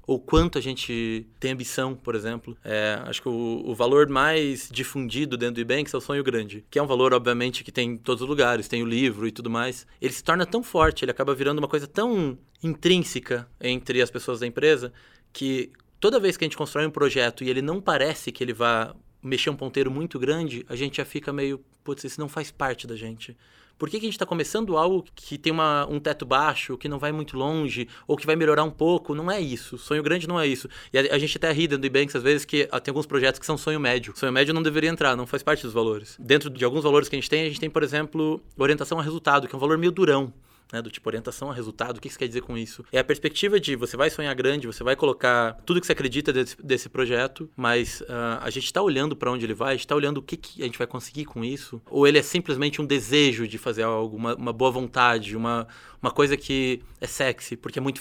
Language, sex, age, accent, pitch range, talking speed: Portuguese, male, 20-39, Brazilian, 120-150 Hz, 260 wpm